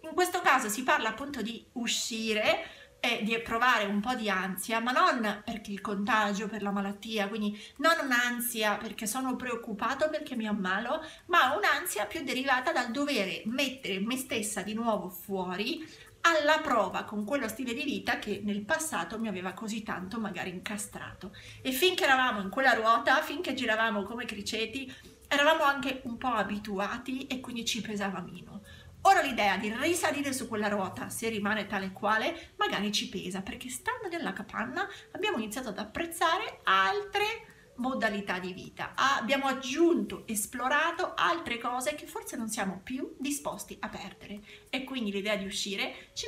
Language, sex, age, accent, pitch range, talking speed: Italian, female, 30-49, native, 205-275 Hz, 160 wpm